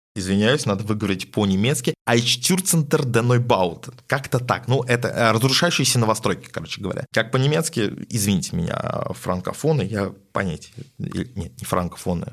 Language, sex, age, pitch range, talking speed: Russian, male, 20-39, 100-140 Hz, 120 wpm